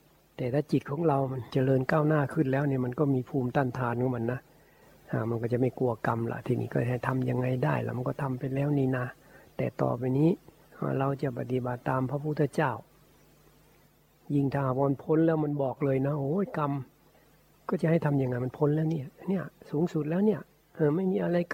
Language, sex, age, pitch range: Thai, male, 60-79, 125-160 Hz